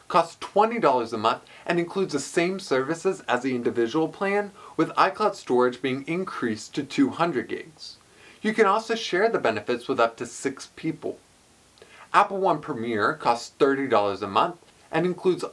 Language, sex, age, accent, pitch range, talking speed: English, male, 20-39, American, 125-195 Hz, 160 wpm